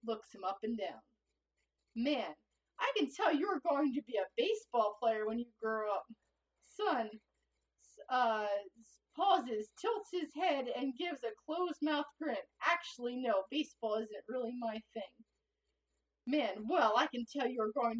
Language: English